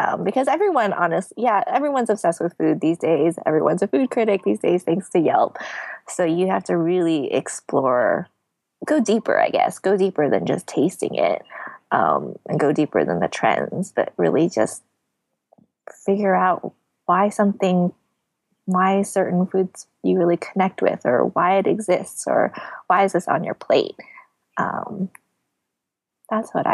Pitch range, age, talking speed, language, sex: 175-260 Hz, 20-39, 160 wpm, English, female